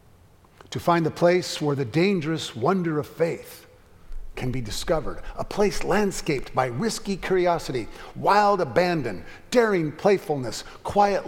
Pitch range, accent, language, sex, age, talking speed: 100-160 Hz, American, English, male, 50-69, 130 wpm